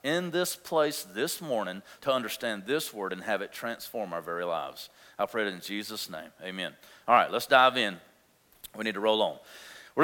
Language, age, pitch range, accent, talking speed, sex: English, 40-59, 155-205 Hz, American, 205 wpm, male